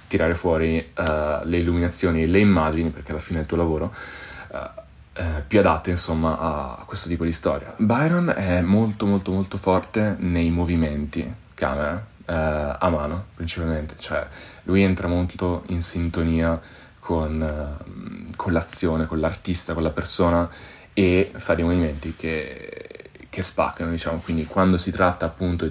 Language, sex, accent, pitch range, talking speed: Italian, male, native, 80-90 Hz, 140 wpm